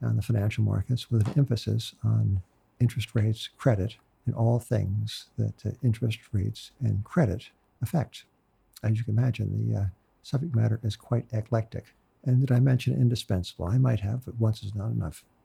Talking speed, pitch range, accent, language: 170 wpm, 110-130 Hz, American, English